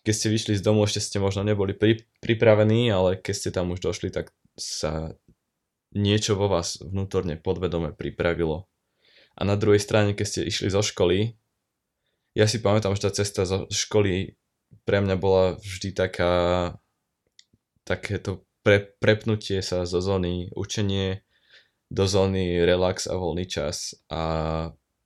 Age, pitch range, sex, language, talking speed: 20-39, 95-110 Hz, male, Slovak, 145 wpm